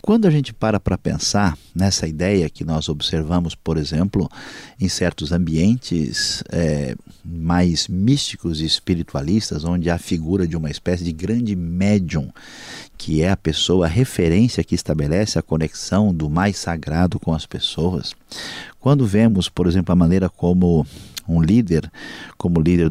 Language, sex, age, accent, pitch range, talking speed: Portuguese, male, 50-69, Brazilian, 85-105 Hz, 145 wpm